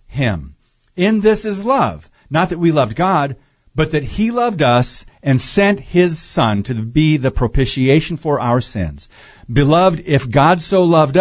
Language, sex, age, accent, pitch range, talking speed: English, male, 50-69, American, 115-155 Hz, 165 wpm